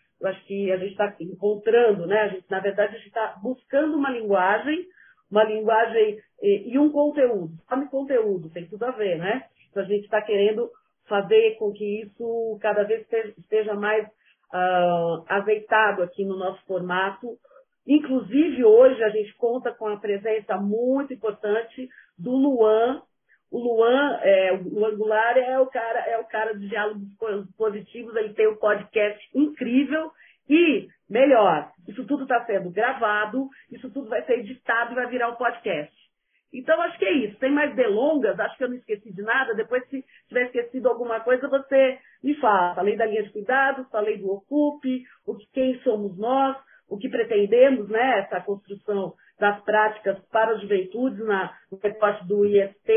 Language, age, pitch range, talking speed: Portuguese, 40-59, 205-255 Hz, 170 wpm